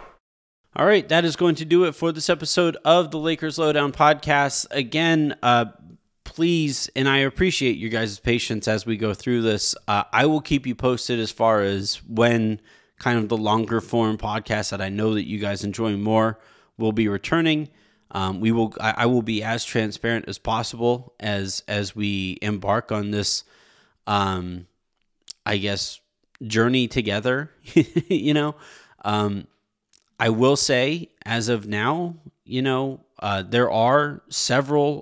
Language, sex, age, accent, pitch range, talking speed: English, male, 20-39, American, 105-135 Hz, 160 wpm